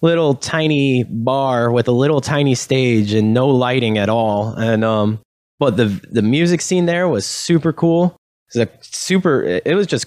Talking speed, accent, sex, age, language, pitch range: 185 wpm, American, male, 20-39, English, 100-135 Hz